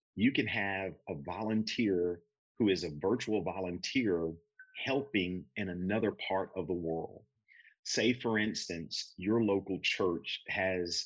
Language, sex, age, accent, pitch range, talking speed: English, male, 40-59, American, 95-115 Hz, 130 wpm